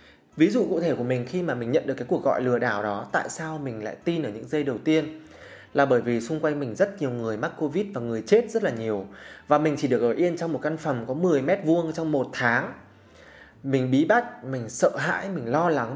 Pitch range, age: 125-165 Hz, 20-39